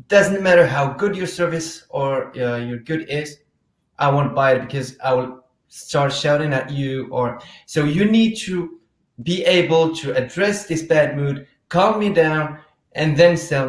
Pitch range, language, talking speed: 135-175 Hz, English, 175 wpm